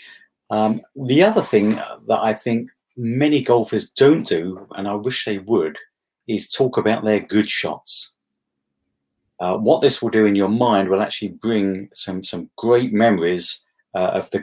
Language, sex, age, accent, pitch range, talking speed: English, male, 50-69, British, 95-115 Hz, 165 wpm